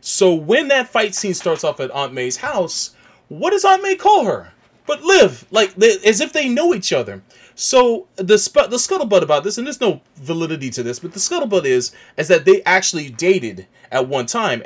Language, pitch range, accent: English, 160-245 Hz, American